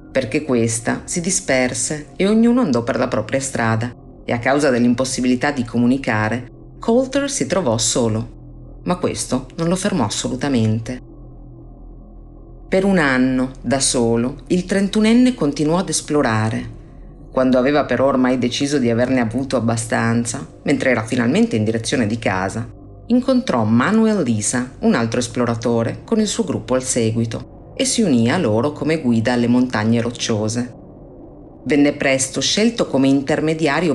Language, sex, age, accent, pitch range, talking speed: Italian, female, 40-59, native, 120-155 Hz, 140 wpm